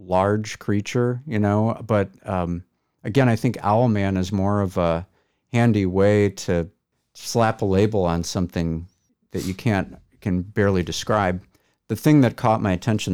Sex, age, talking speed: male, 50-69, 155 wpm